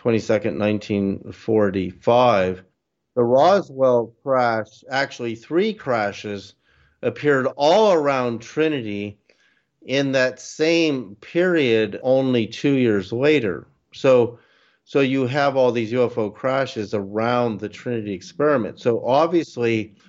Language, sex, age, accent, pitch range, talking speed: English, male, 50-69, American, 105-125 Hz, 100 wpm